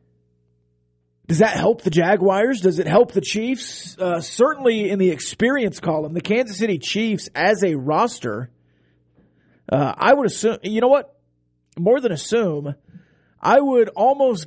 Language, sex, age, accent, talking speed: English, male, 40-59, American, 150 wpm